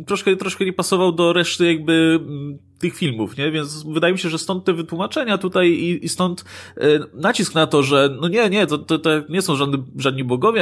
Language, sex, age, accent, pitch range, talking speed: Polish, male, 20-39, native, 135-180 Hz, 210 wpm